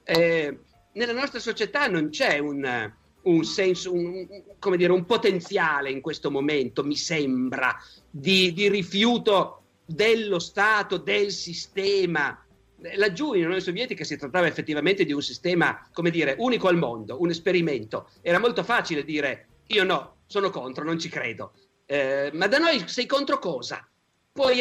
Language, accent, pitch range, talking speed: Italian, native, 140-185 Hz, 150 wpm